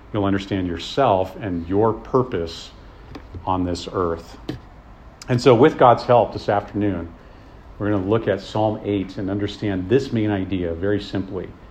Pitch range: 95-110 Hz